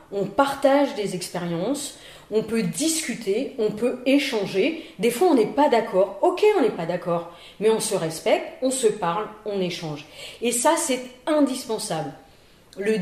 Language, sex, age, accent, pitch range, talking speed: French, female, 30-49, French, 220-325 Hz, 160 wpm